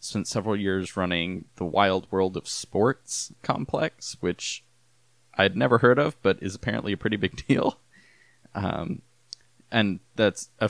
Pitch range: 90-115 Hz